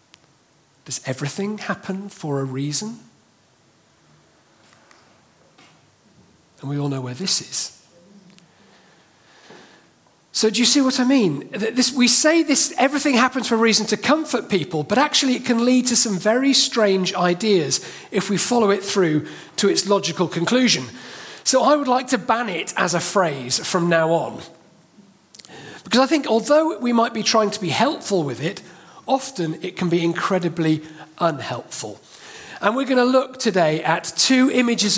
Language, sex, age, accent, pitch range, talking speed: English, male, 40-59, British, 160-230 Hz, 155 wpm